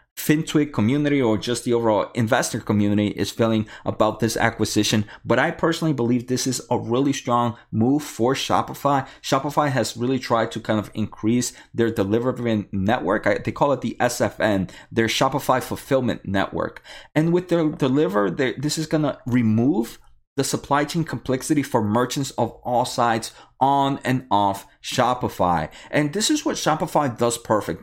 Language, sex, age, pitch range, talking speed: English, male, 30-49, 115-150 Hz, 155 wpm